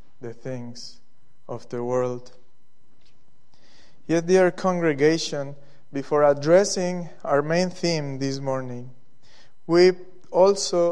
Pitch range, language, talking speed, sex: 130-160 Hz, English, 95 wpm, male